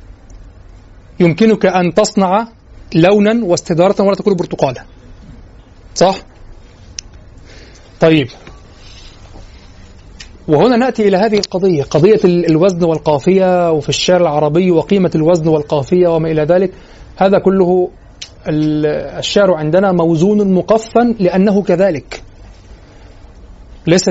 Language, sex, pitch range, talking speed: Arabic, male, 135-215 Hz, 90 wpm